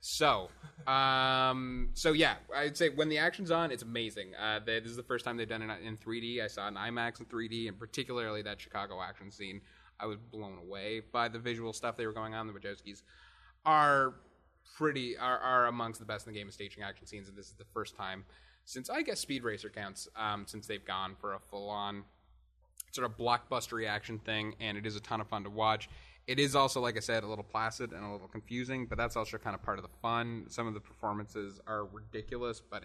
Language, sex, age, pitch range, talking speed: English, male, 20-39, 100-120 Hz, 230 wpm